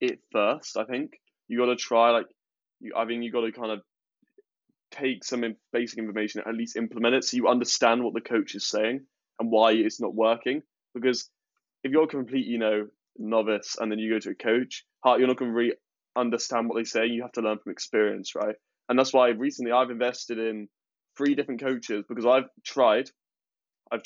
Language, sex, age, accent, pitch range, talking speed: English, male, 20-39, British, 110-125 Hz, 205 wpm